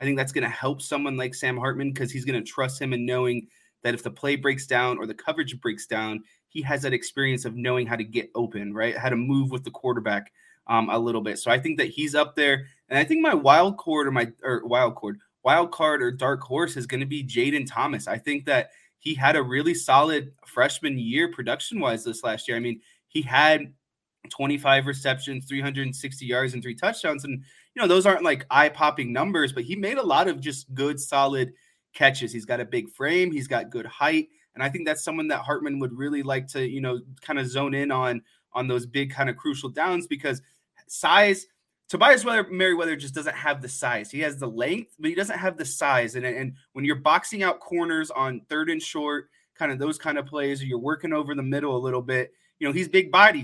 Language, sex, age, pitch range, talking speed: English, male, 20-39, 125-150 Hz, 230 wpm